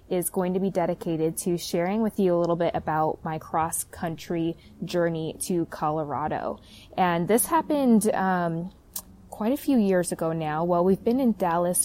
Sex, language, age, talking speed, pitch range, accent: female, English, 20-39, 170 wpm, 175-215 Hz, American